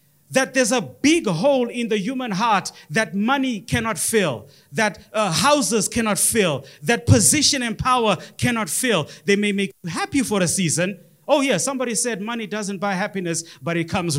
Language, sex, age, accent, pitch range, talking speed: English, male, 30-49, South African, 190-250 Hz, 180 wpm